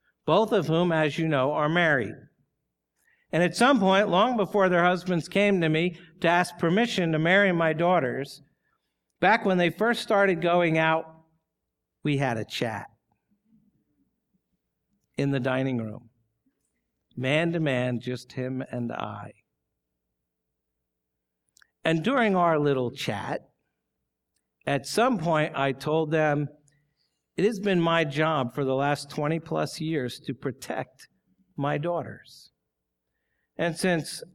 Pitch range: 140-190 Hz